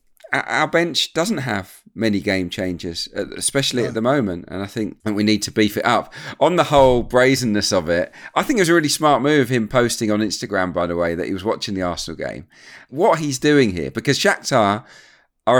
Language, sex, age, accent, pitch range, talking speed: English, male, 40-59, British, 95-135 Hz, 210 wpm